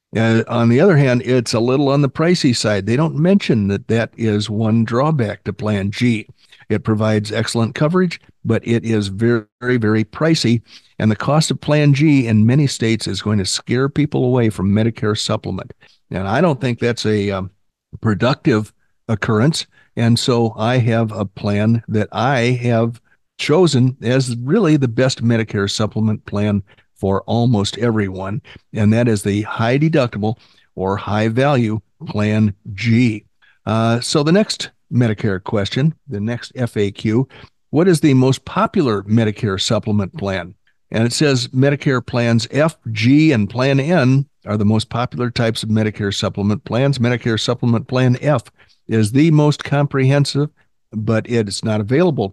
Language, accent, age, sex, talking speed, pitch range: English, American, 50-69, male, 160 wpm, 105-130 Hz